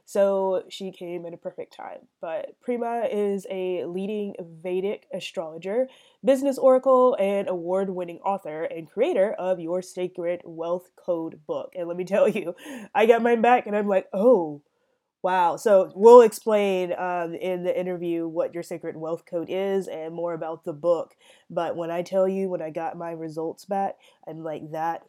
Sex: female